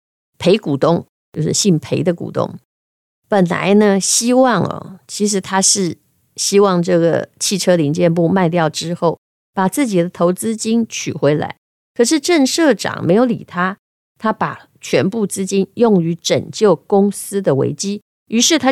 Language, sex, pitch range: Chinese, female, 165-220 Hz